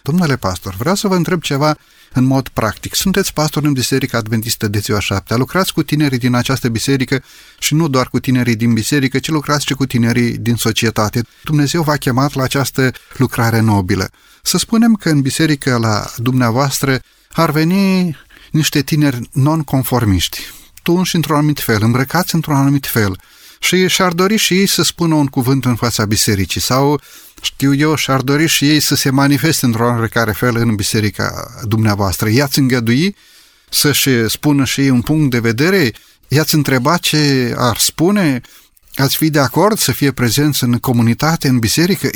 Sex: male